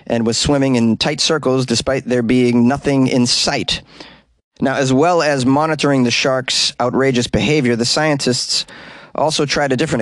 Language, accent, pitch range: English, American, 115-140 Hz